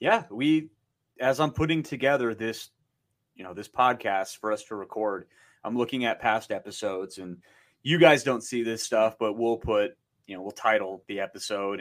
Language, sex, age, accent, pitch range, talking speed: English, male, 30-49, American, 100-130 Hz, 185 wpm